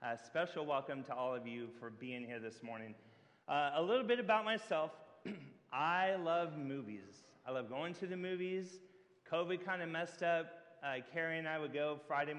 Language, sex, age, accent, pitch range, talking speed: English, male, 30-49, American, 140-190 Hz, 190 wpm